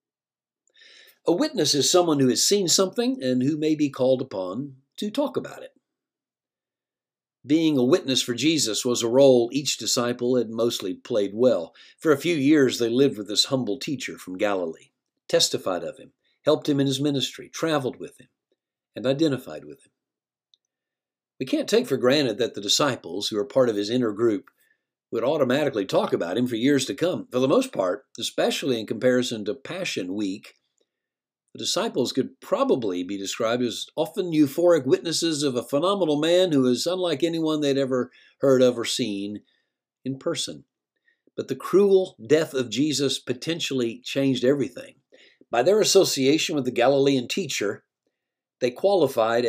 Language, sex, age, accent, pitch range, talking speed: English, male, 50-69, American, 125-165 Hz, 165 wpm